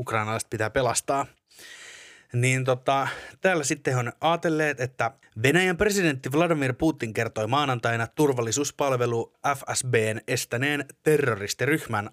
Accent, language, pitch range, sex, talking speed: native, Finnish, 115-150 Hz, male, 105 wpm